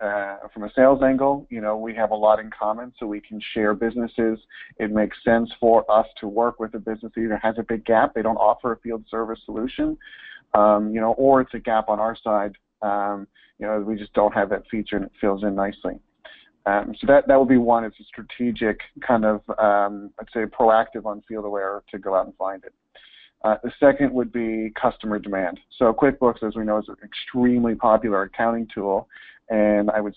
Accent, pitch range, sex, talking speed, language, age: American, 105-115 Hz, male, 220 wpm, English, 40-59